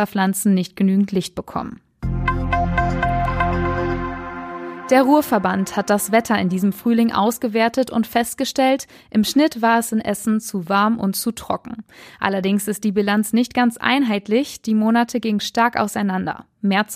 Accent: German